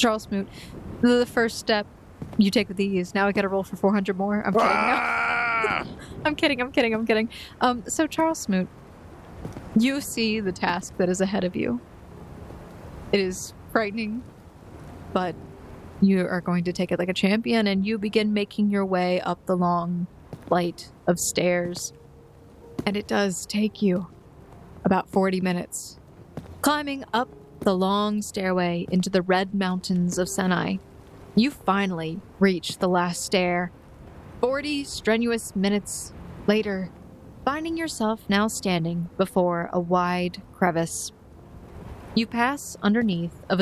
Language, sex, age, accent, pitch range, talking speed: English, female, 30-49, American, 180-220 Hz, 145 wpm